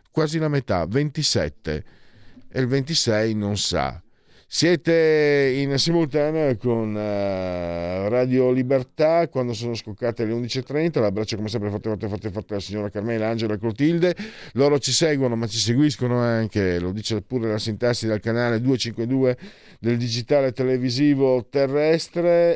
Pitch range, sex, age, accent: 95-130 Hz, male, 50-69, native